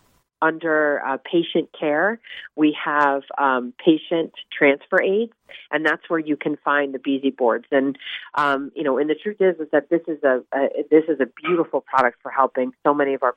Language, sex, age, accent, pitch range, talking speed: English, female, 40-59, American, 130-150 Hz, 200 wpm